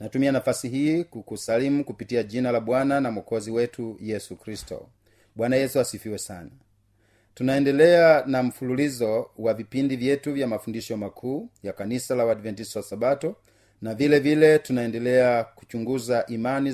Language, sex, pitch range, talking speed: Swahili, male, 115-140 Hz, 135 wpm